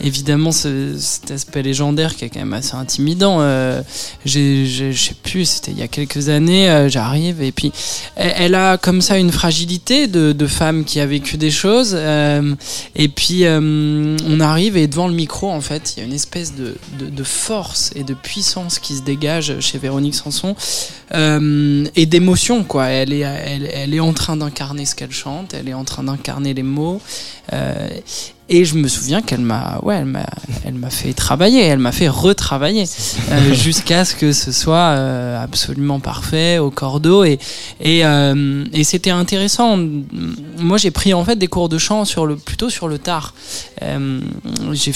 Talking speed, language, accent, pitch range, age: 190 wpm, French, French, 140-175 Hz, 20-39